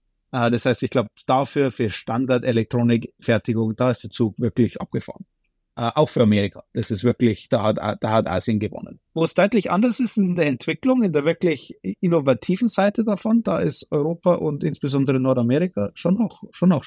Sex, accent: male, German